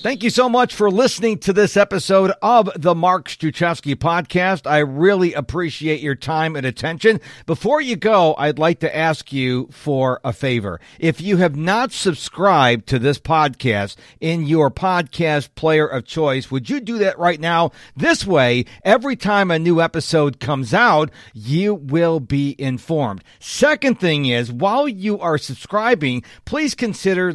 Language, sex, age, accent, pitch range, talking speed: English, male, 50-69, American, 145-210 Hz, 160 wpm